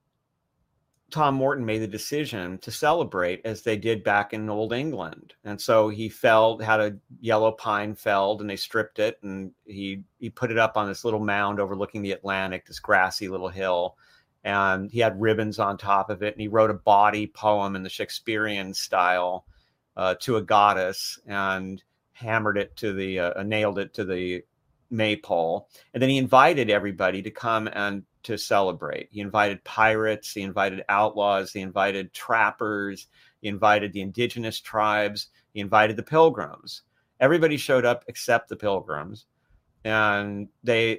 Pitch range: 100-115 Hz